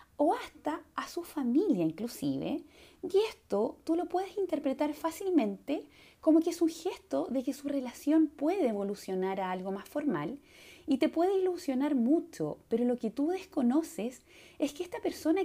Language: Spanish